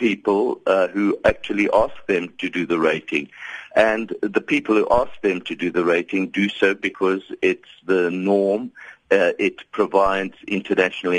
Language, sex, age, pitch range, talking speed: English, male, 60-79, 80-110 Hz, 160 wpm